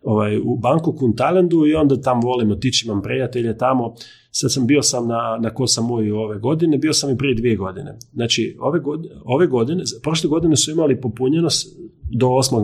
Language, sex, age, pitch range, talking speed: Croatian, male, 40-59, 115-160 Hz, 195 wpm